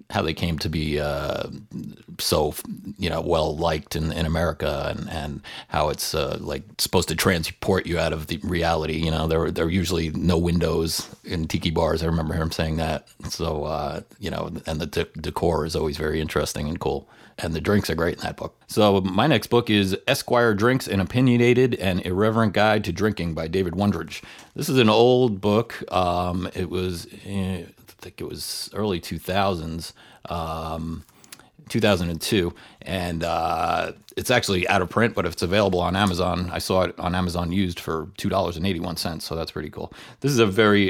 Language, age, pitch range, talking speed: English, 40-59, 80-100 Hz, 190 wpm